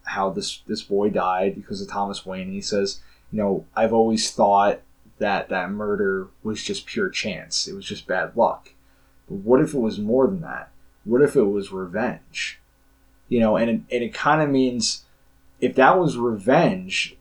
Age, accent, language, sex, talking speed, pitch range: 20-39, American, English, male, 190 wpm, 100-125 Hz